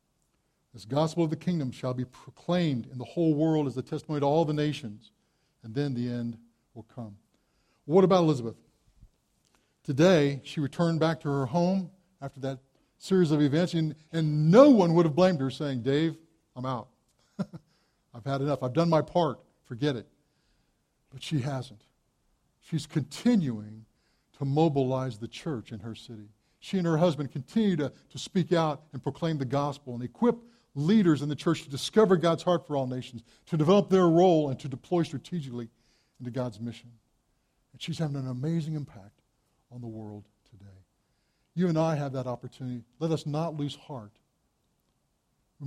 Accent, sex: American, male